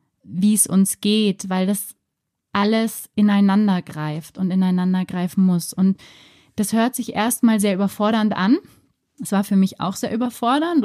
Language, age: German, 20-39